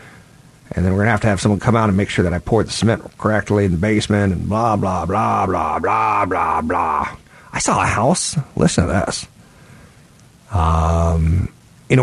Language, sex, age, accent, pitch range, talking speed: English, male, 50-69, American, 95-125 Hz, 200 wpm